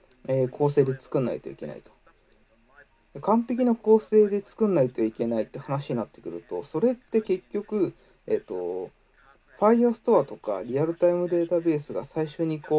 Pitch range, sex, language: 145-215 Hz, male, Japanese